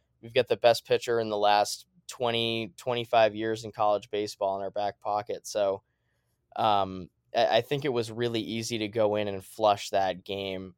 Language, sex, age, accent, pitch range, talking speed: English, male, 20-39, American, 105-120 Hz, 185 wpm